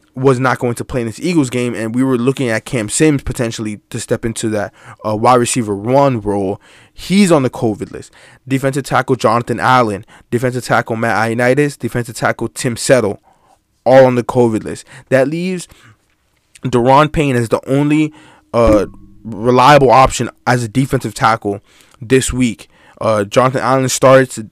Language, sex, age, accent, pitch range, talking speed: English, male, 20-39, American, 115-140 Hz, 165 wpm